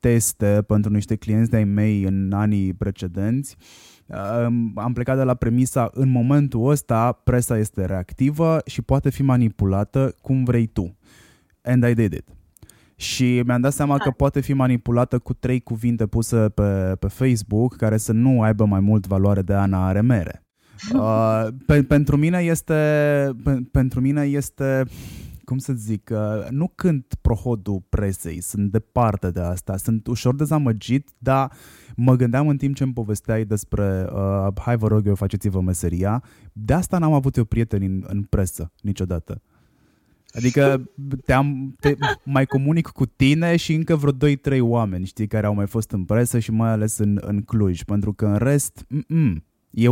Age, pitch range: 20-39, 100-135 Hz